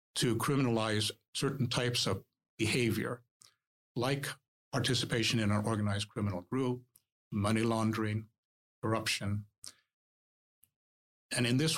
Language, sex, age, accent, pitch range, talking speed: English, male, 60-79, American, 110-130 Hz, 95 wpm